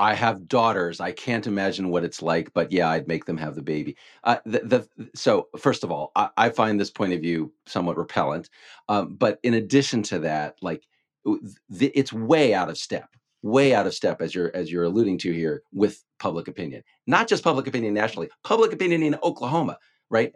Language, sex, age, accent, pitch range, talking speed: English, male, 50-69, American, 95-140 Hz, 210 wpm